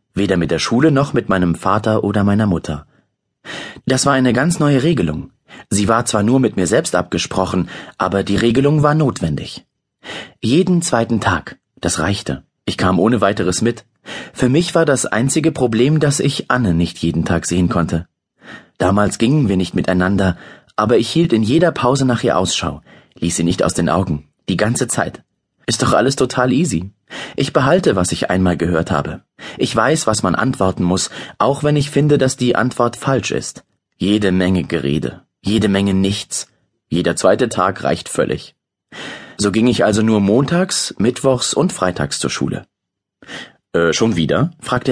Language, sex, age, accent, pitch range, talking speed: German, male, 30-49, German, 90-130 Hz, 175 wpm